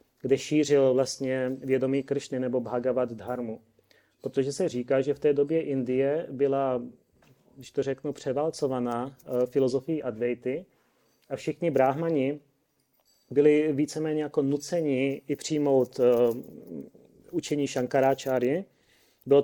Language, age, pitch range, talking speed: Czech, 30-49, 125-145 Hz, 110 wpm